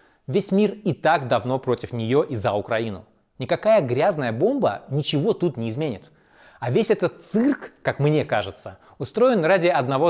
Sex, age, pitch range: male, 20-39, 120-170 Hz